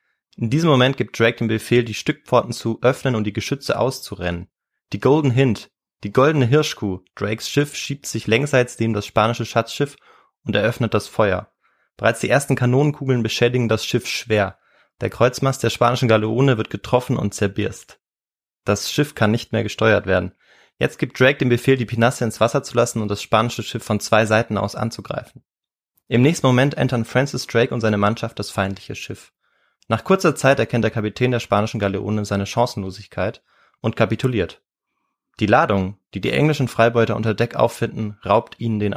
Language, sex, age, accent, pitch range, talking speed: German, male, 20-39, German, 105-130 Hz, 175 wpm